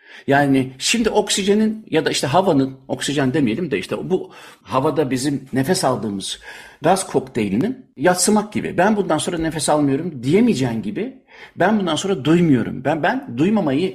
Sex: male